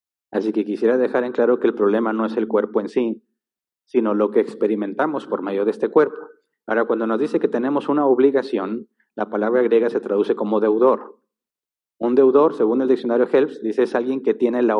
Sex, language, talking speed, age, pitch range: male, Spanish, 205 wpm, 40-59, 105-125 Hz